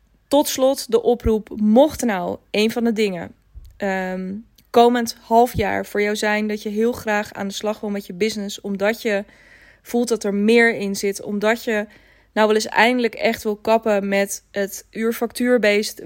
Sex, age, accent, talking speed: female, 20-39, Dutch, 180 wpm